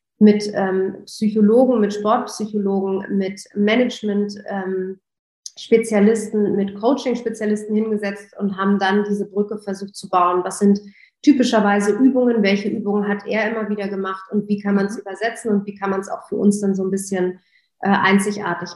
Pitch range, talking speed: 200-220 Hz, 160 wpm